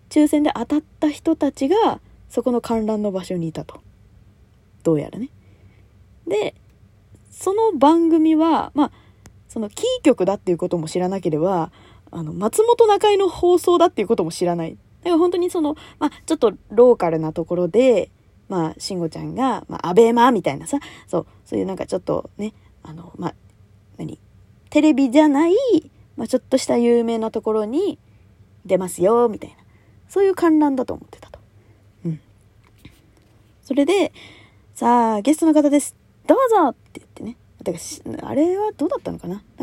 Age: 20-39